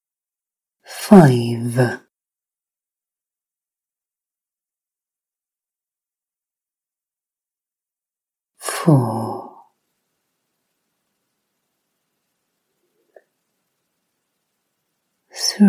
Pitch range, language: 130-175 Hz, English